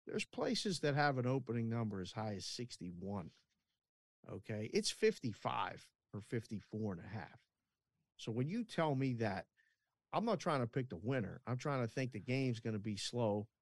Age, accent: 50-69, American